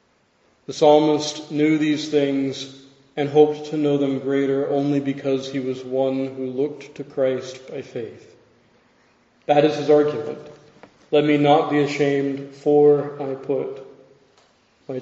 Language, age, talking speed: English, 40-59, 140 wpm